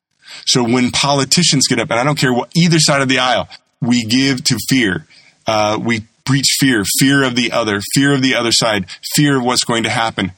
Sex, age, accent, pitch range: male, 30-49, American, 100-130 Hz